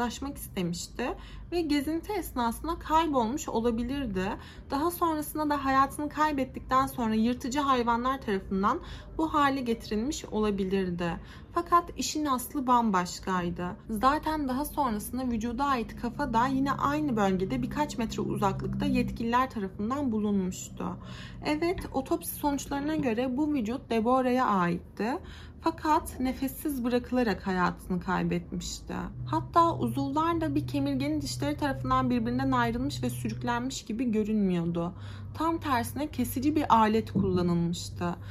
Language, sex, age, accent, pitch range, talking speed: Turkish, female, 30-49, native, 185-290 Hz, 115 wpm